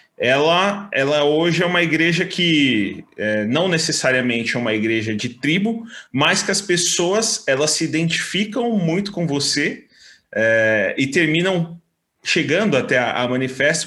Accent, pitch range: Brazilian, 120-170 Hz